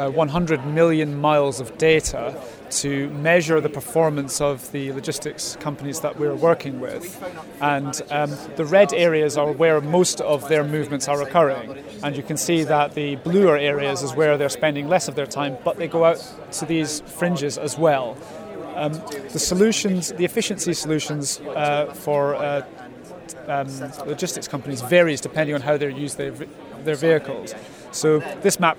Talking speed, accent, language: 170 wpm, British, English